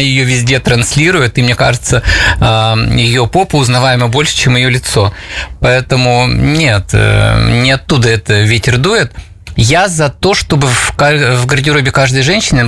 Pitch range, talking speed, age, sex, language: 115-140 Hz, 135 wpm, 20-39, male, Russian